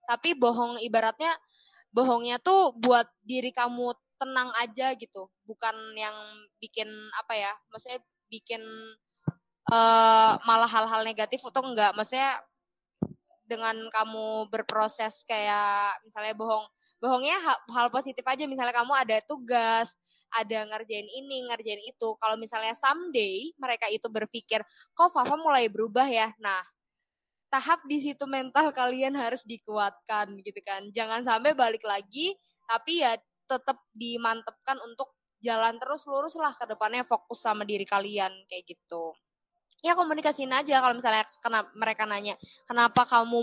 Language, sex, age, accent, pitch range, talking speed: Indonesian, female, 20-39, native, 215-255 Hz, 130 wpm